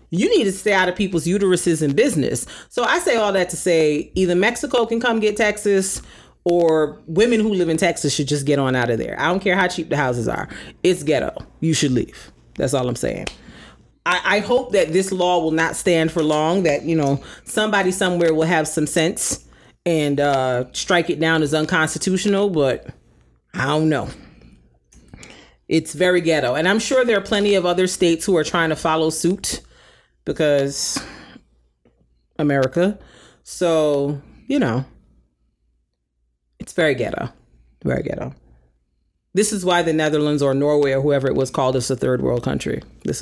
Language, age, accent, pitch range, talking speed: English, 40-59, American, 135-185 Hz, 180 wpm